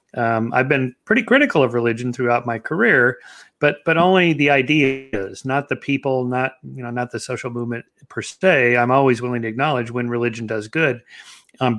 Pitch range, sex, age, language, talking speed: 120-145 Hz, male, 40-59, English, 190 wpm